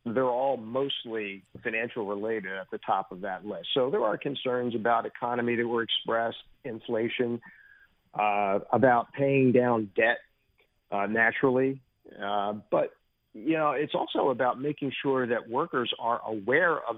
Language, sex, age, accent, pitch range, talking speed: English, male, 50-69, American, 115-130 Hz, 145 wpm